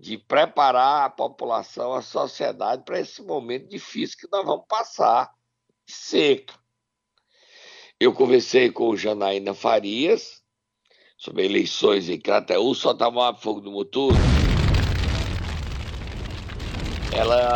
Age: 60-79